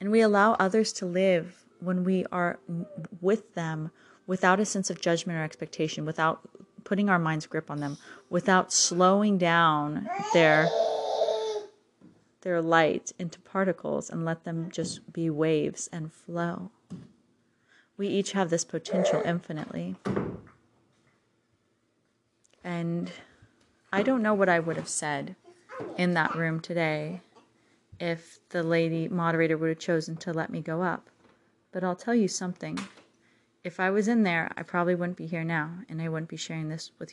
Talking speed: 155 wpm